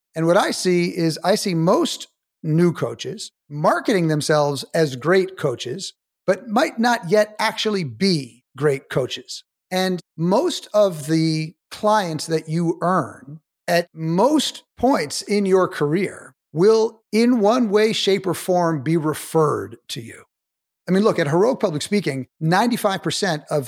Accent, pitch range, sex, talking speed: American, 155-195 Hz, male, 145 wpm